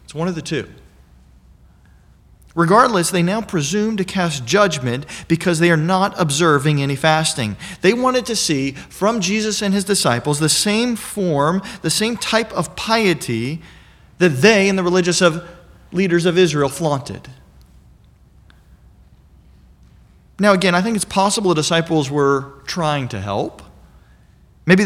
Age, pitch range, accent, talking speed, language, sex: 40-59, 125-185 Hz, American, 140 wpm, English, male